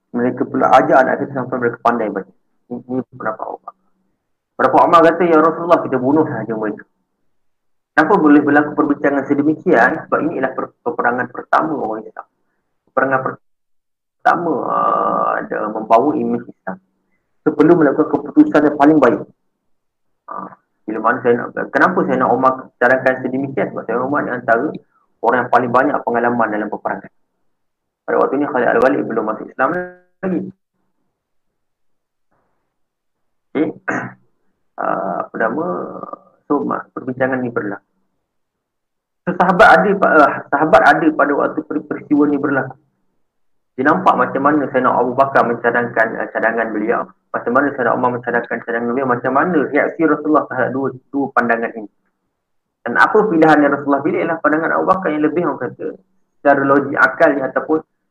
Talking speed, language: 150 wpm, Malay